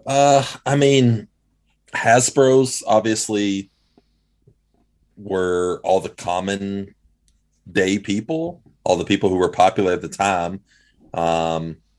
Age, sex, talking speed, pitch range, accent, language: 30-49, male, 105 wpm, 90-115 Hz, American, English